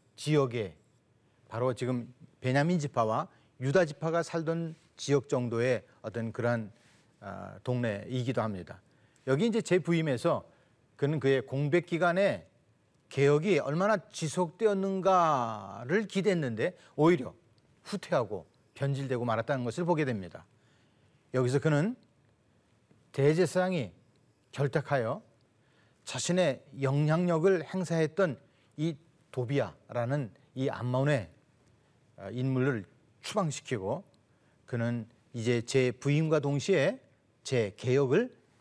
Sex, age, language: male, 40-59, Korean